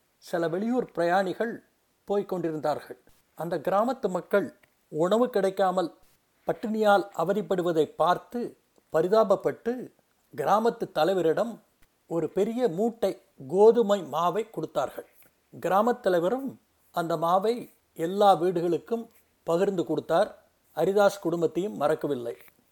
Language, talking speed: Tamil, 85 wpm